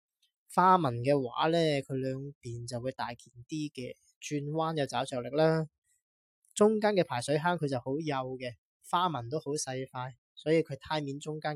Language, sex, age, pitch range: Chinese, male, 20-39, 120-155 Hz